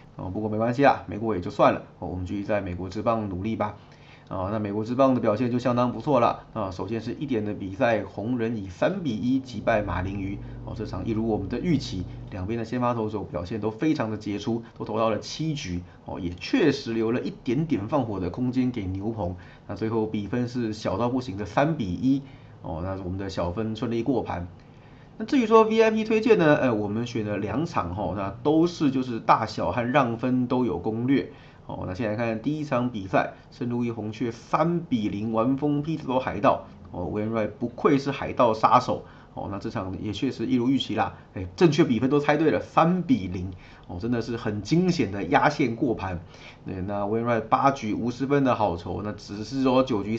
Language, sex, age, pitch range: Chinese, male, 30-49, 105-130 Hz